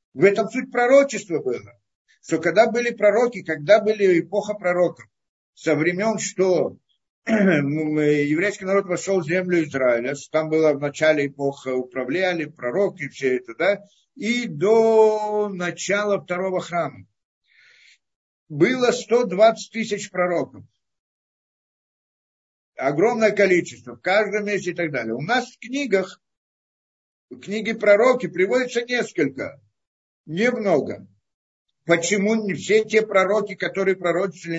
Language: Russian